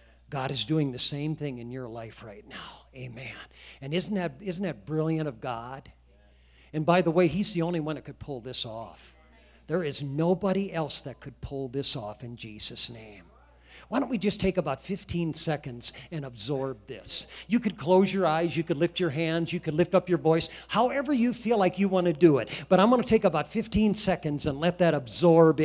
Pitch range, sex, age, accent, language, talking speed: 125-190 Hz, male, 50-69, American, English, 215 wpm